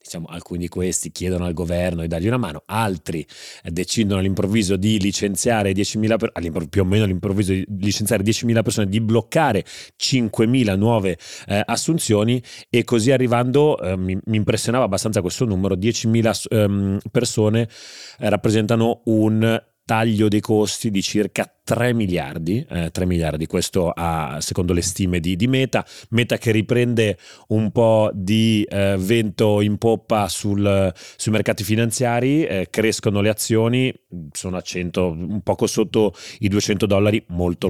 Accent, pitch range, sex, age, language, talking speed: native, 90-115 Hz, male, 30-49, Italian, 135 wpm